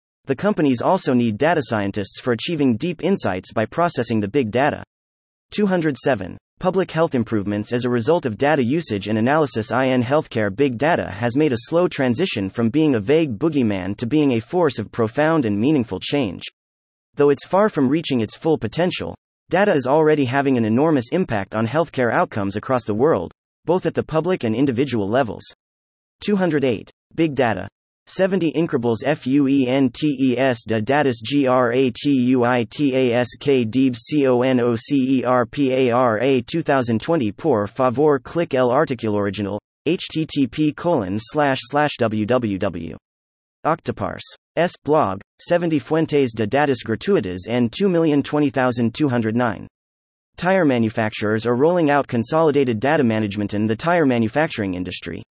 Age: 30-49